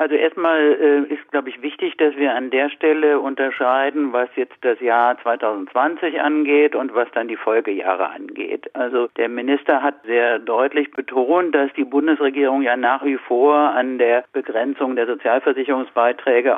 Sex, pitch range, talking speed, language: male, 125-150 Hz, 160 wpm, German